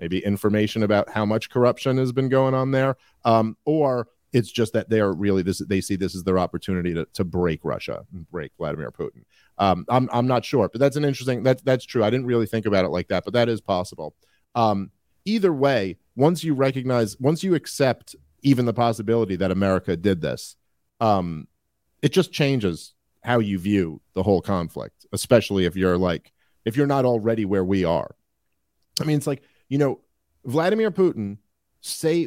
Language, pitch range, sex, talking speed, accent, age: English, 95-140 Hz, male, 195 wpm, American, 40-59